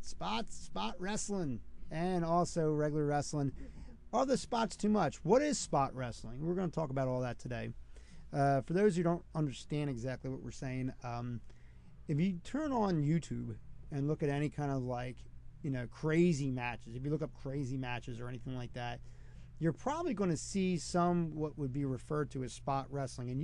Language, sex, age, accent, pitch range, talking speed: English, male, 40-59, American, 120-155 Hz, 195 wpm